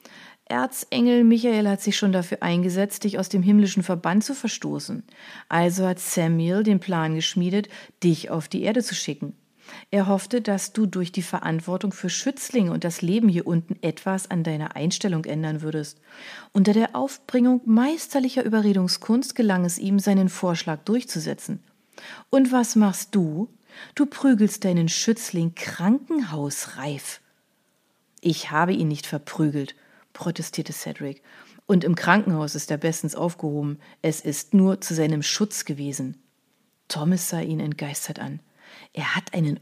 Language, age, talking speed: German, 40-59, 145 wpm